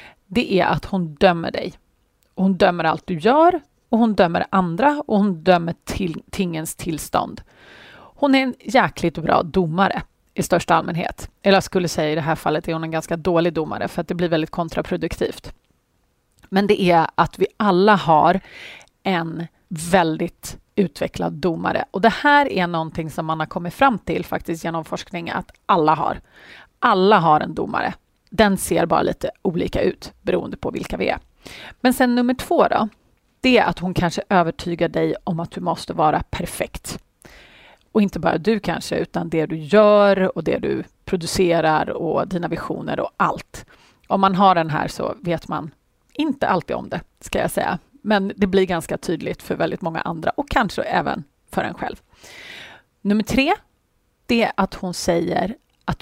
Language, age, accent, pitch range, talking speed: Swedish, 30-49, native, 165-205 Hz, 180 wpm